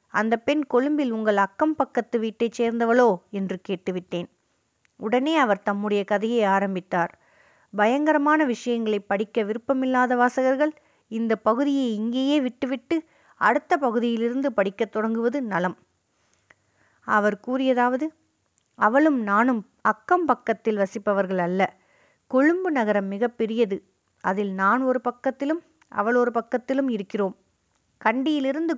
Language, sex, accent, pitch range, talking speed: Tamil, female, native, 205-265 Hz, 105 wpm